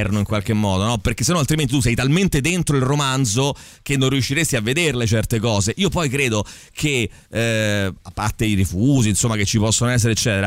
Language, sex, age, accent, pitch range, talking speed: Italian, male, 30-49, native, 110-140 Hz, 185 wpm